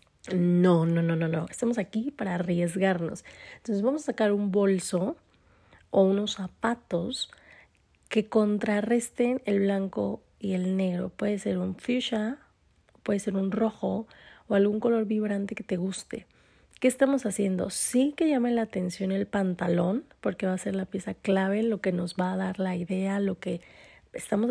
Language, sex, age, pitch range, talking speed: Spanish, female, 30-49, 185-220 Hz, 165 wpm